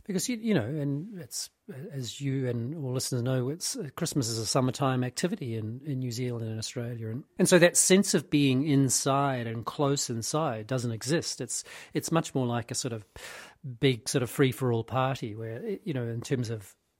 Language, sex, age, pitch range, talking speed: English, male, 40-59, 120-150 Hz, 210 wpm